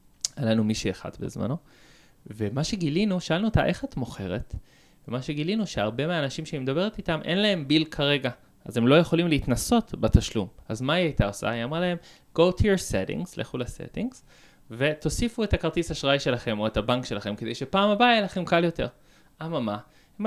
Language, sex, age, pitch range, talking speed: Hebrew, male, 20-39, 115-180 Hz, 180 wpm